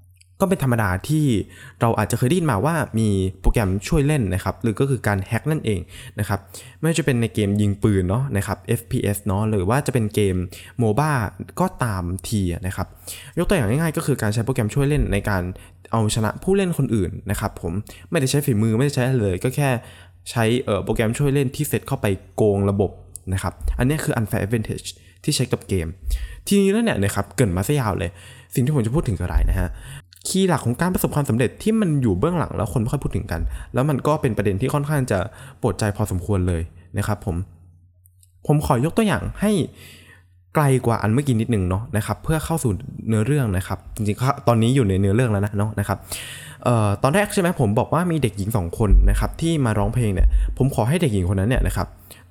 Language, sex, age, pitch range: Thai, male, 20-39, 95-130 Hz